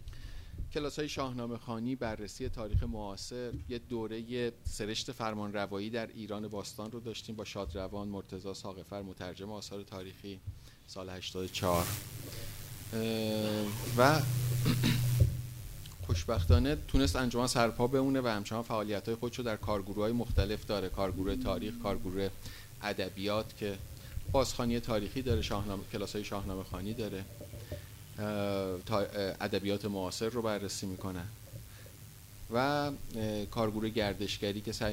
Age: 30-49